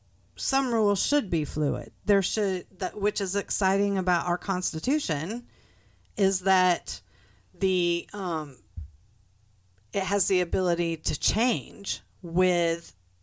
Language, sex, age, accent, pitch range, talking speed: English, female, 50-69, American, 145-190 Hz, 115 wpm